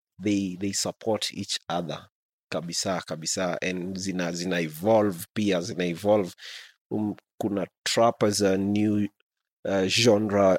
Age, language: 30-49, English